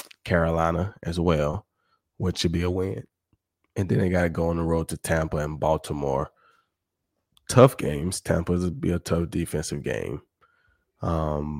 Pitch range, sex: 80-95 Hz, male